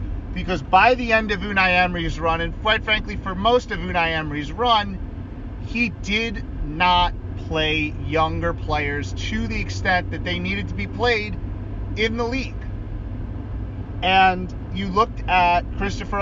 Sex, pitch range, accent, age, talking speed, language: male, 90-145 Hz, American, 30-49, 150 wpm, English